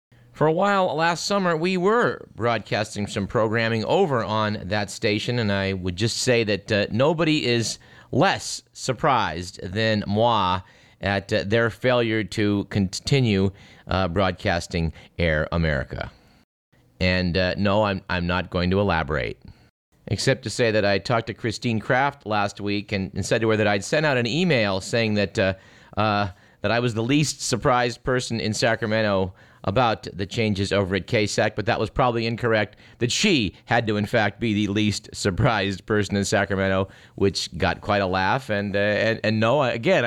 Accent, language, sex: American, English, male